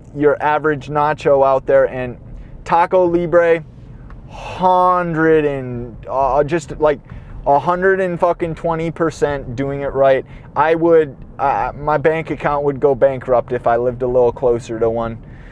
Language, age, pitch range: English, 20-39, 140-185 Hz